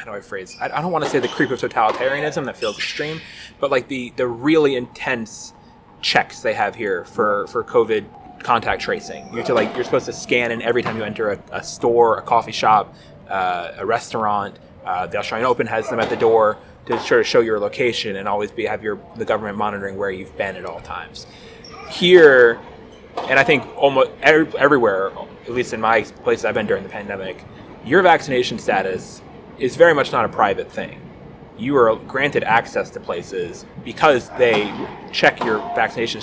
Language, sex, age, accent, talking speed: English, male, 20-39, American, 195 wpm